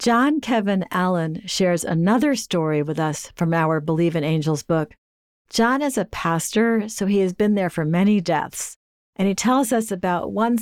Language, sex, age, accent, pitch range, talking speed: English, female, 50-69, American, 155-195 Hz, 180 wpm